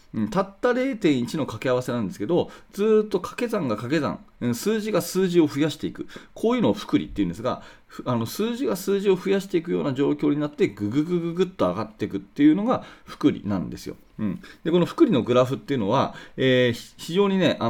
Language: Japanese